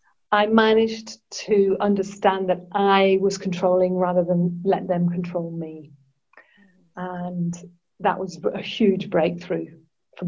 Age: 40-59